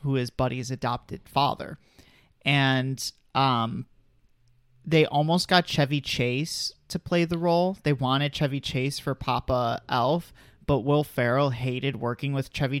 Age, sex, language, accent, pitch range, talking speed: 30-49, male, English, American, 125-145 Hz, 140 wpm